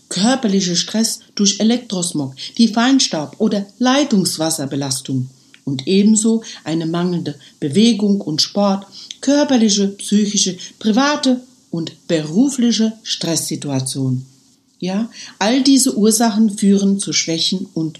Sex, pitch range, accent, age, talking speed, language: female, 165-240 Hz, German, 60-79, 95 wpm, German